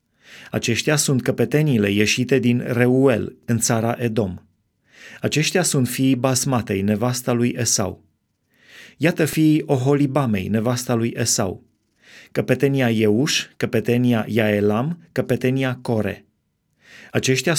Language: Romanian